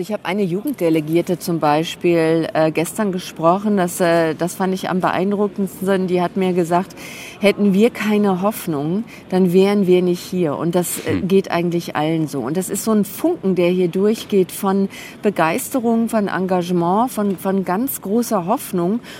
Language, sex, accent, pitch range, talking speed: German, female, German, 180-215 Hz, 165 wpm